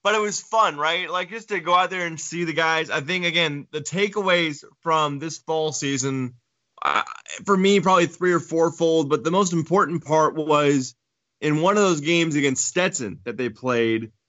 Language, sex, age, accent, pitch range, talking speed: English, male, 20-39, American, 130-170 Hz, 195 wpm